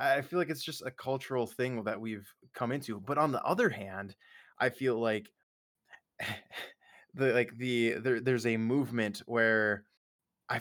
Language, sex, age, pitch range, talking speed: English, male, 20-39, 105-125 Hz, 165 wpm